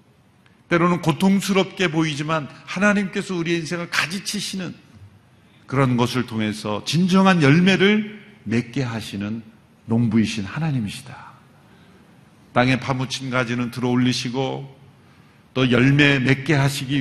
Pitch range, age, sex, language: 125-175 Hz, 50-69, male, Korean